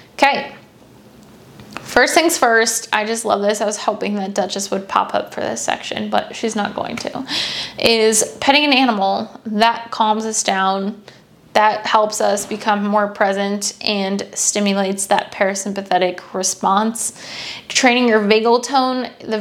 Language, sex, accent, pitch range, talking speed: English, female, American, 205-230 Hz, 150 wpm